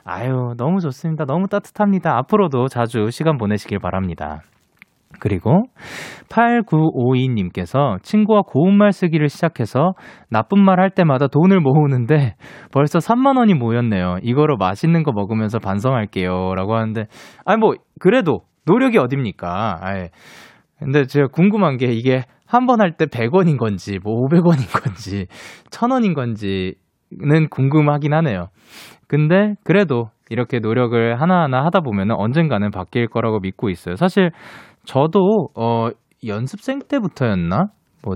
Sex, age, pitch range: male, 20-39, 110-185 Hz